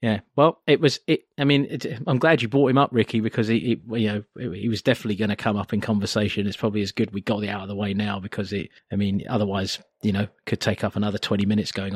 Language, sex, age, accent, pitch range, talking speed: English, male, 30-49, British, 110-150 Hz, 275 wpm